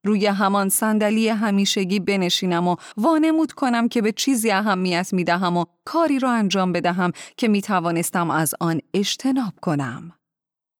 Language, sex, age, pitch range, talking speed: Persian, female, 30-49, 180-245 Hz, 135 wpm